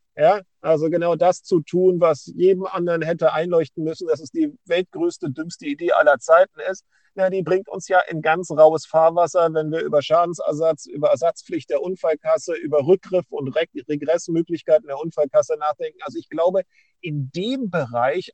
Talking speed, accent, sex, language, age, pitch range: 165 wpm, German, male, German, 50-69, 145-195 Hz